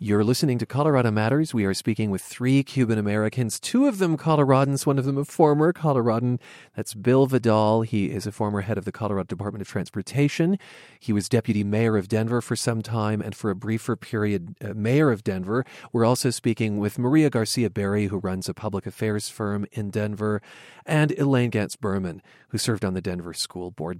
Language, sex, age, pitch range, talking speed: English, male, 40-59, 100-130 Hz, 195 wpm